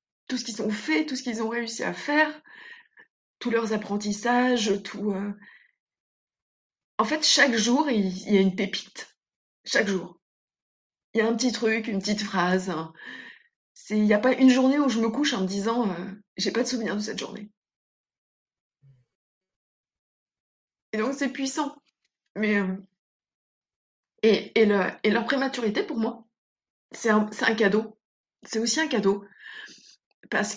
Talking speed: 170 wpm